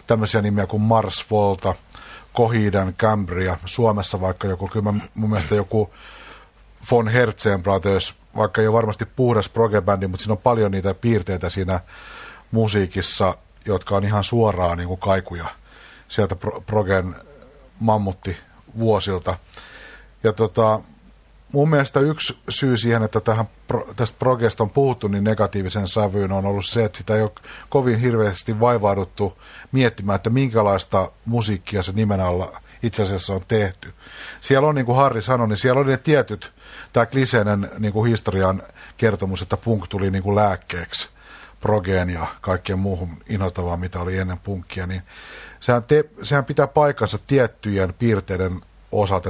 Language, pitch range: Finnish, 95-115 Hz